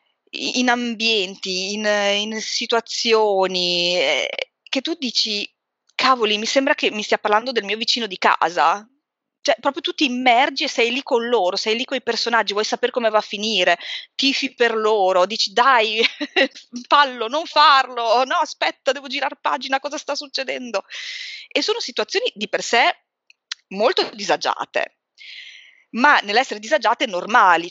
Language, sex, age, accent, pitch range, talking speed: Italian, female, 20-39, native, 190-270 Hz, 150 wpm